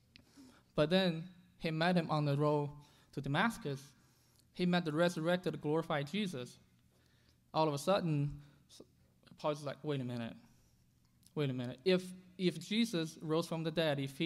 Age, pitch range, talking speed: 20-39, 130-170 Hz, 150 wpm